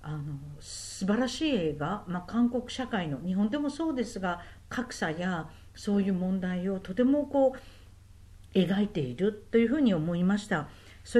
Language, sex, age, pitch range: Japanese, female, 50-69, 180-245 Hz